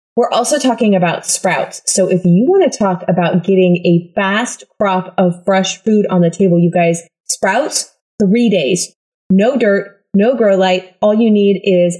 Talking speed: 180 wpm